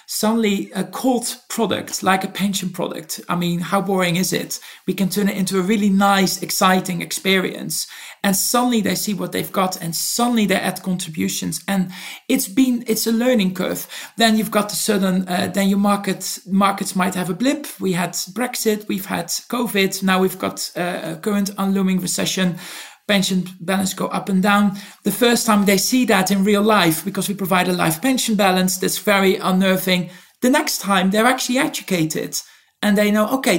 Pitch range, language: 185-215 Hz, English